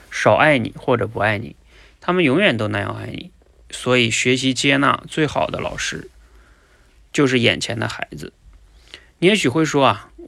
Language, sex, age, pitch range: Chinese, male, 30-49, 105-135 Hz